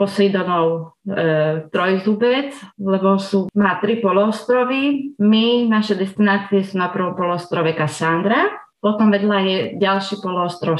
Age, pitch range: 30-49, 160-200 Hz